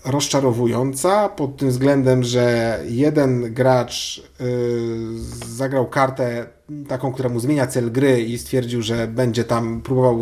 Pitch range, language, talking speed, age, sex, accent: 125-160 Hz, Polish, 125 wpm, 40-59, male, native